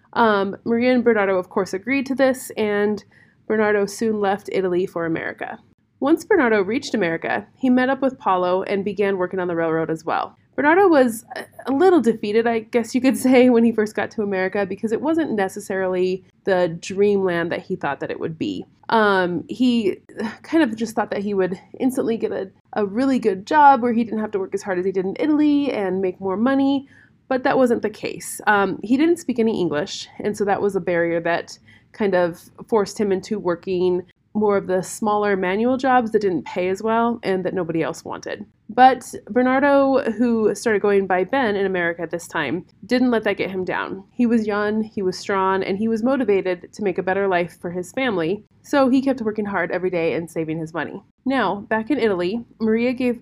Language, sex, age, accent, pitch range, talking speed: English, female, 30-49, American, 185-245 Hz, 210 wpm